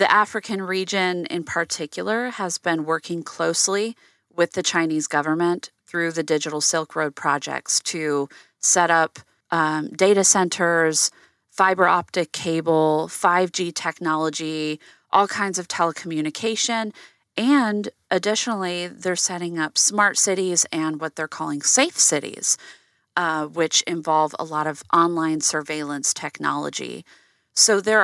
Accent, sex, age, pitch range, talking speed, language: American, female, 30-49, 155-195 Hz, 125 wpm, English